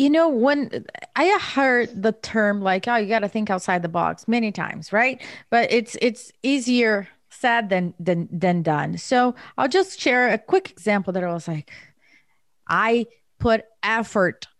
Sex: female